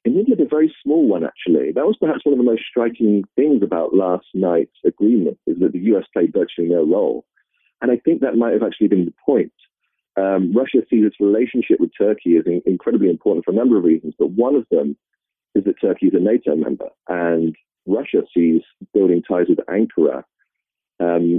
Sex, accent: male, British